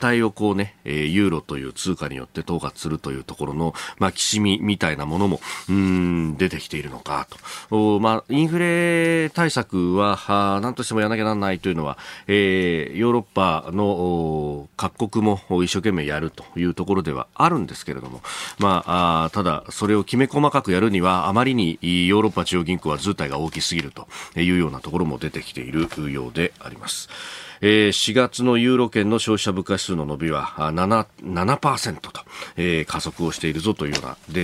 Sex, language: male, Japanese